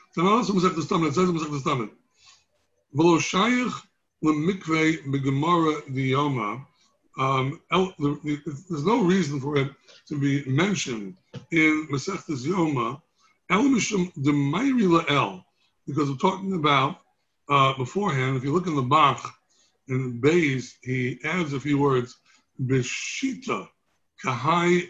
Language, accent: English, American